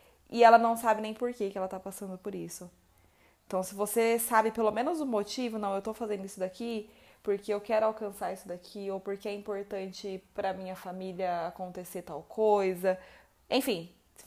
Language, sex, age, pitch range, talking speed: Portuguese, female, 20-39, 195-240 Hz, 190 wpm